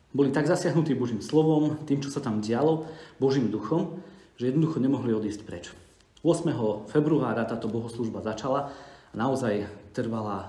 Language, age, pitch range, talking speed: Slovak, 40-59, 110-140 Hz, 145 wpm